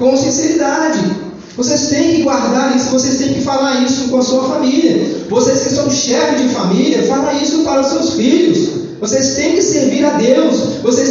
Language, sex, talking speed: Portuguese, male, 190 wpm